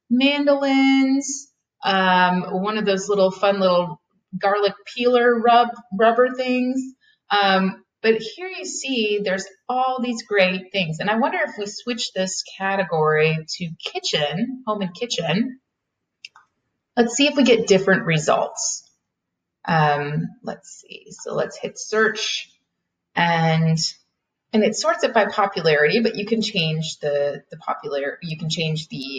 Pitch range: 175-240 Hz